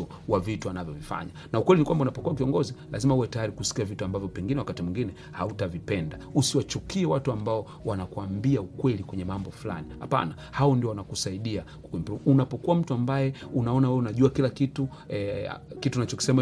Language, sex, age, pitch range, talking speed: Swahili, male, 40-59, 105-140 Hz, 150 wpm